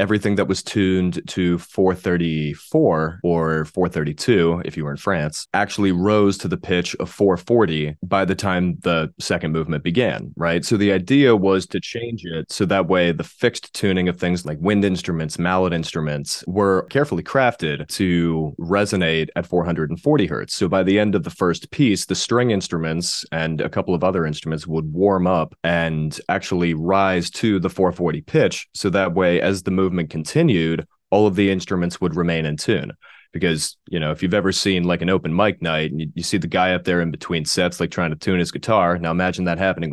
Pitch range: 85-100 Hz